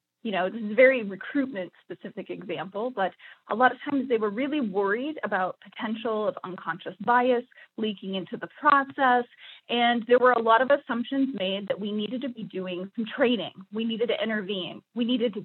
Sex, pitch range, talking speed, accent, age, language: female, 205-260 Hz, 195 wpm, American, 30-49, English